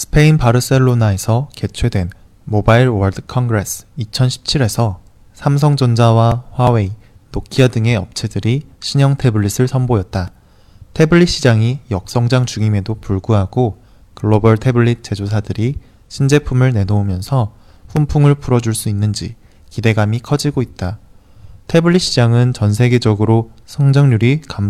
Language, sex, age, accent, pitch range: Chinese, male, 20-39, Korean, 105-125 Hz